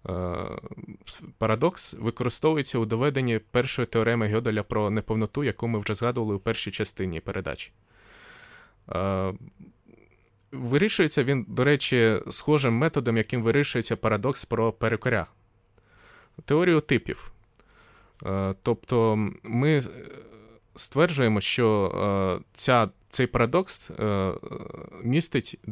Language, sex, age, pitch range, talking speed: Ukrainian, male, 20-39, 110-135 Hz, 90 wpm